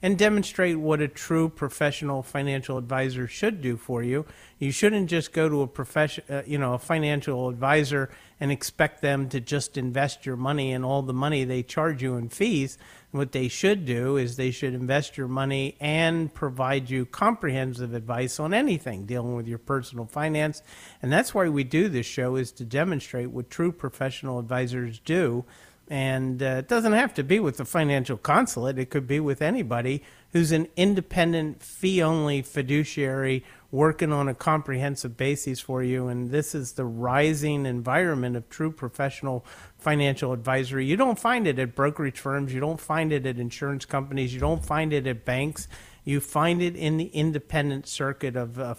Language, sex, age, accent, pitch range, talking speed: English, male, 50-69, American, 130-155 Hz, 180 wpm